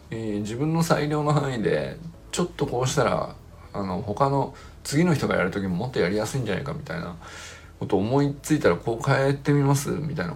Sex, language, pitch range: male, Japanese, 95-150 Hz